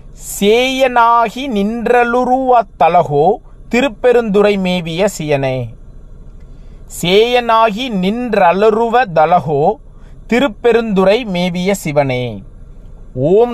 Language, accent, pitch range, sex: Tamil, native, 180-235 Hz, male